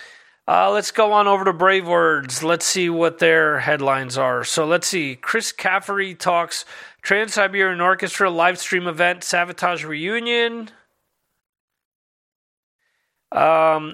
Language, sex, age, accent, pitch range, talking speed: English, male, 40-59, American, 165-215 Hz, 125 wpm